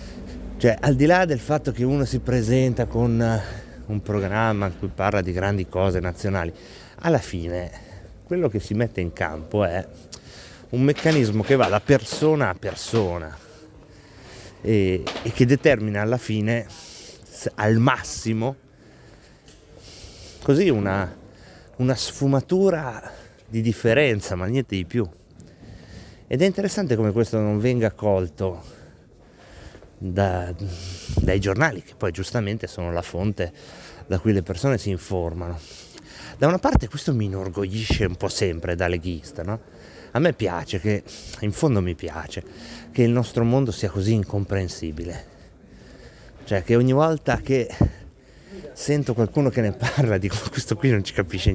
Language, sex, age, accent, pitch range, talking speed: Italian, male, 30-49, native, 95-125 Hz, 140 wpm